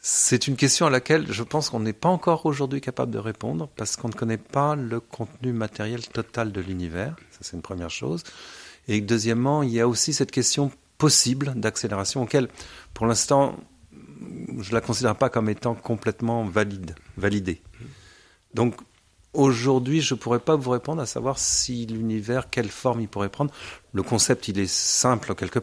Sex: male